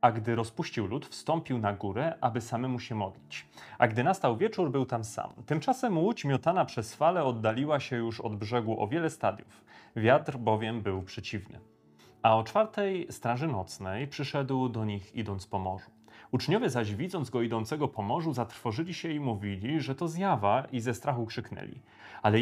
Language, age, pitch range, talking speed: Polish, 30-49, 110-145 Hz, 170 wpm